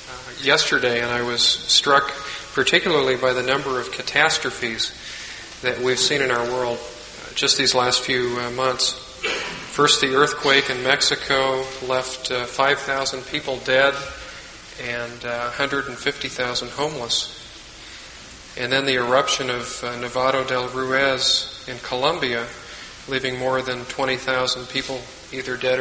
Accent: American